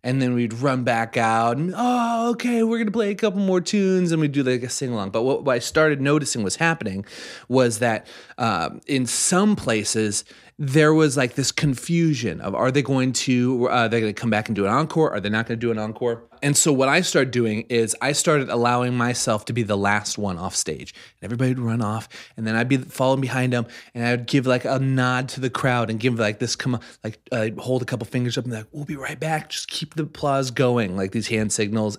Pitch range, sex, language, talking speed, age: 110-140 Hz, male, English, 245 wpm, 30-49